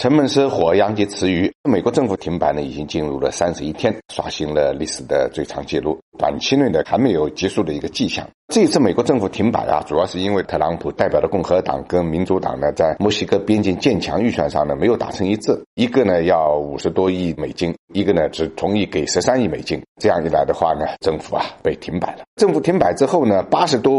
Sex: male